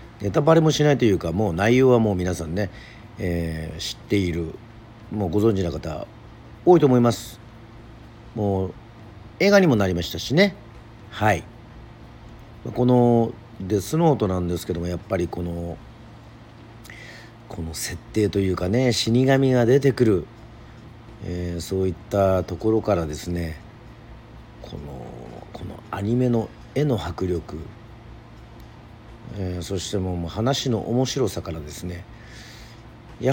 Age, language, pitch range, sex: 50-69, Japanese, 95-115 Hz, male